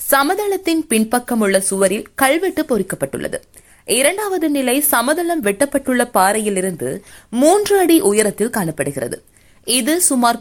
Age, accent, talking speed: 20-39, native, 90 wpm